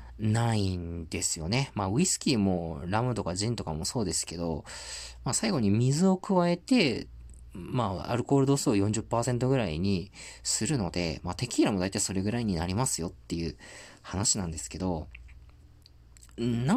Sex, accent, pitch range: male, native, 85-140 Hz